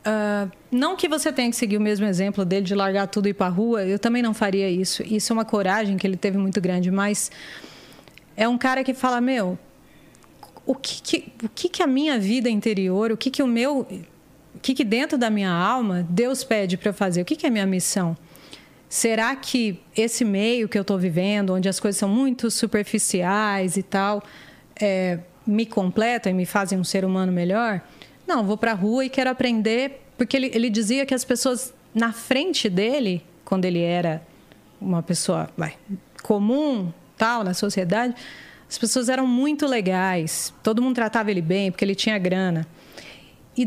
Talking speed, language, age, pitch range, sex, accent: 195 wpm, Portuguese, 30-49, 190-245 Hz, female, Brazilian